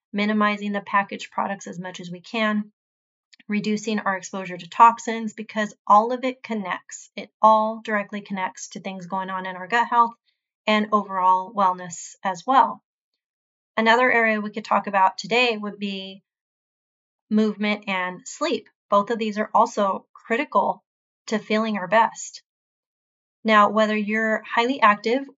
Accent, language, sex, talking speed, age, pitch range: American, English, female, 150 wpm, 30-49, 195-230 Hz